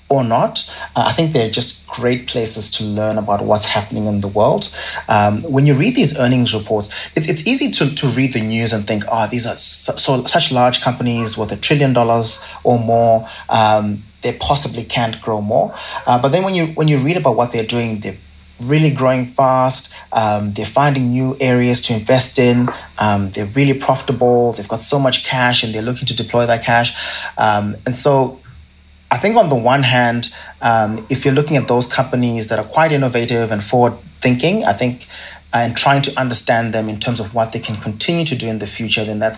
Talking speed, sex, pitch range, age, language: 210 wpm, male, 105-130 Hz, 30-49, English